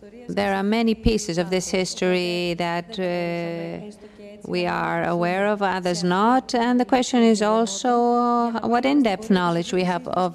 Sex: female